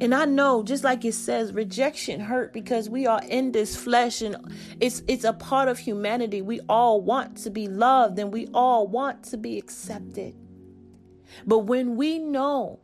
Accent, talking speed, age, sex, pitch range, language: American, 180 wpm, 30-49, female, 205-275 Hz, English